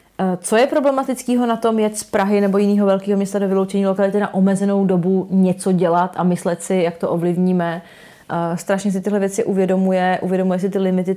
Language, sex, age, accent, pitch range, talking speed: Czech, female, 30-49, native, 180-200 Hz, 190 wpm